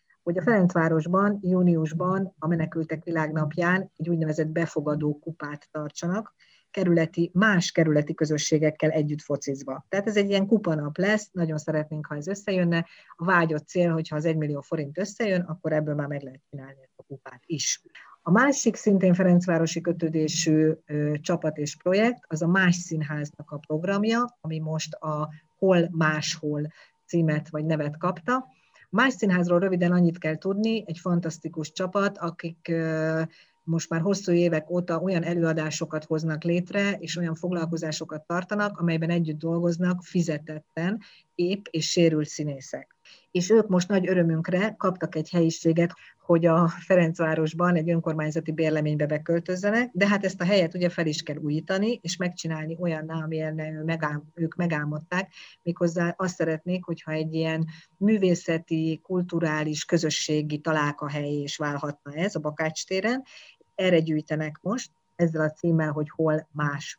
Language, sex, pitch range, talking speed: Hungarian, female, 155-180 Hz, 140 wpm